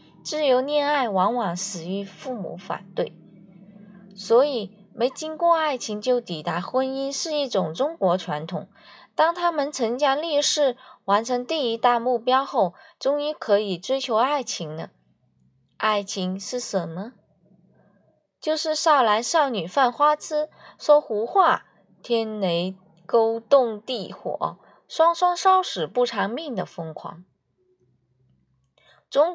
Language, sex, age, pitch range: Chinese, female, 20-39, 190-285 Hz